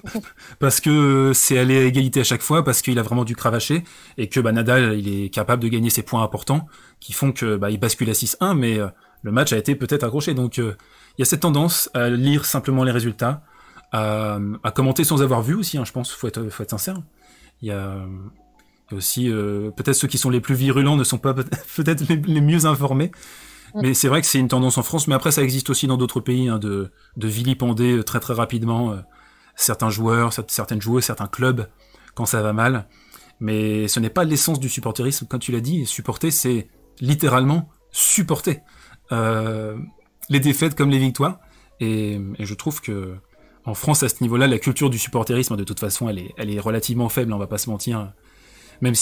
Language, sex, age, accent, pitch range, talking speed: French, male, 20-39, French, 110-135 Hz, 215 wpm